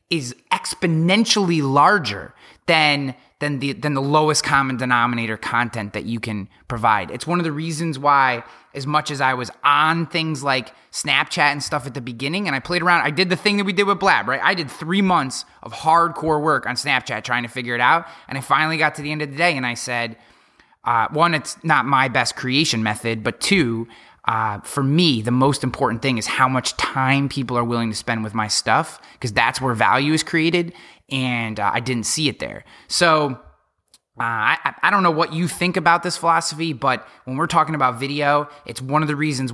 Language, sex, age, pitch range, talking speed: English, male, 20-39, 120-155 Hz, 215 wpm